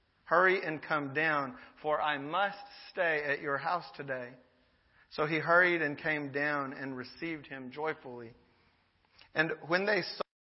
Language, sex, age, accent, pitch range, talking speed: English, male, 40-59, American, 130-155 Hz, 150 wpm